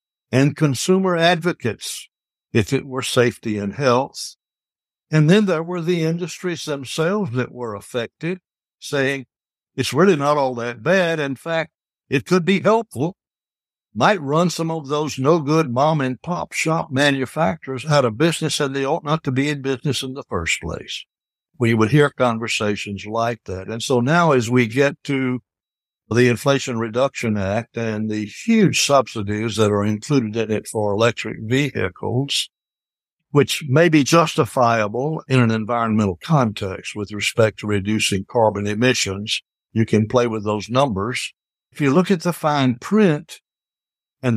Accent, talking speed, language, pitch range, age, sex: American, 155 wpm, English, 115-155 Hz, 60-79, male